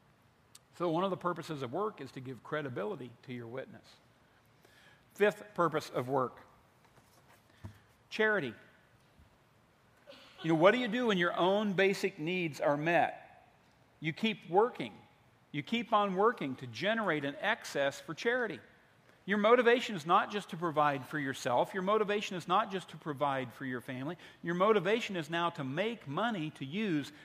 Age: 50-69